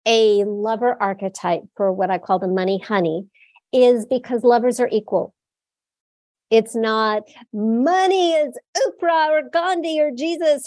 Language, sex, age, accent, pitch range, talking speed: English, female, 50-69, American, 195-265 Hz, 135 wpm